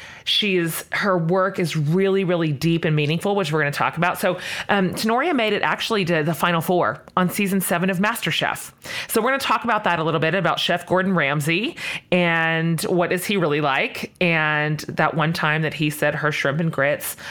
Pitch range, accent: 160-200 Hz, American